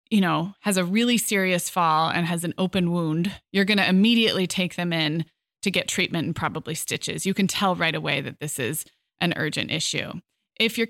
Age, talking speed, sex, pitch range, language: 20-39, 210 wpm, female, 170-210 Hz, English